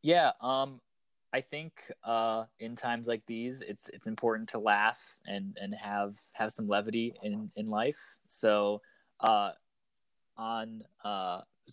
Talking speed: 140 wpm